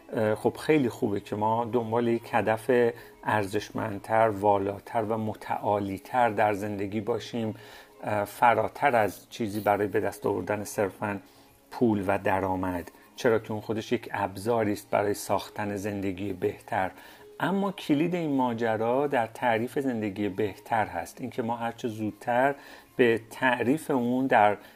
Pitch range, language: 105-135 Hz, Persian